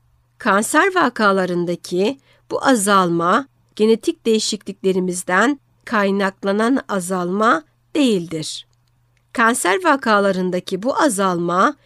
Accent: native